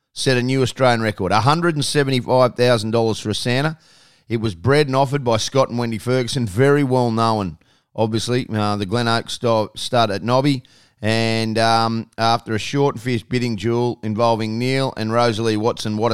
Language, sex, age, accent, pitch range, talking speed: English, male, 30-49, Australian, 110-125 Hz, 165 wpm